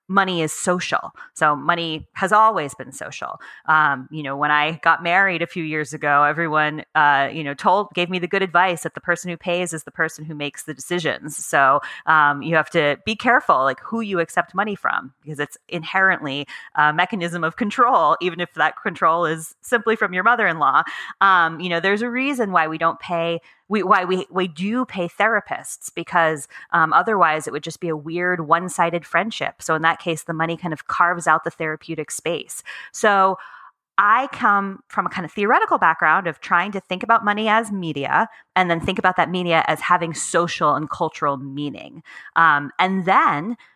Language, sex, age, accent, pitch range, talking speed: English, female, 30-49, American, 155-190 Hz, 195 wpm